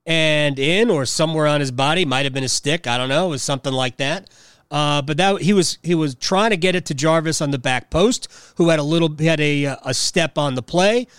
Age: 40-59